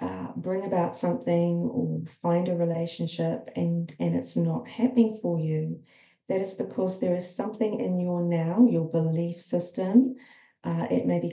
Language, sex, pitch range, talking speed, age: English, female, 165-220 Hz, 165 wpm, 40-59